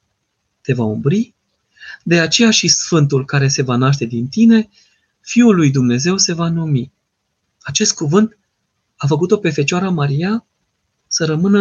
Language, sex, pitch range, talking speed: Romanian, male, 120-180 Hz, 145 wpm